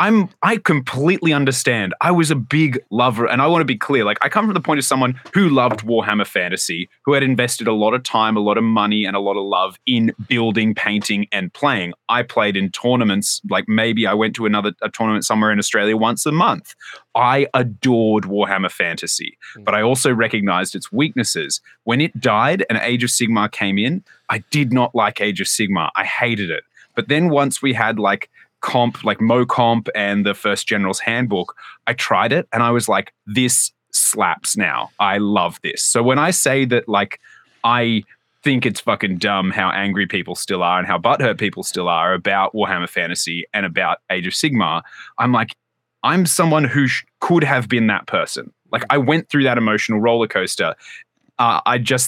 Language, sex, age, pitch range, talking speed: English, male, 20-39, 105-140 Hz, 200 wpm